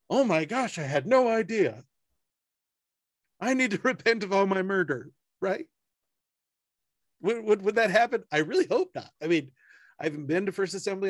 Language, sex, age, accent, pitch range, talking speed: English, male, 40-59, American, 145-200 Hz, 180 wpm